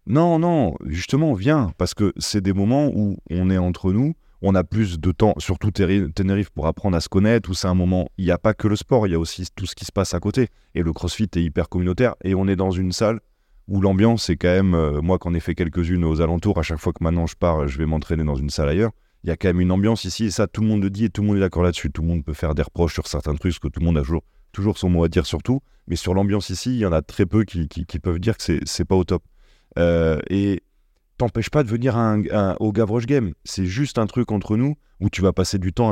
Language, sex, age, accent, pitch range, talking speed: French, male, 30-49, French, 85-115 Hz, 305 wpm